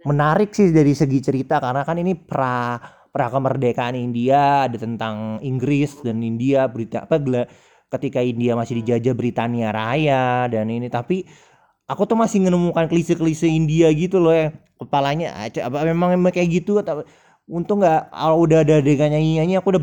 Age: 20-39